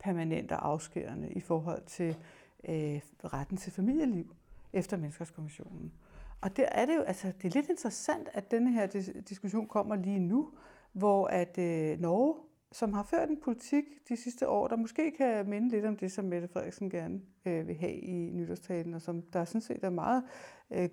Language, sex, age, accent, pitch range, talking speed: Danish, female, 60-79, native, 180-240 Hz, 180 wpm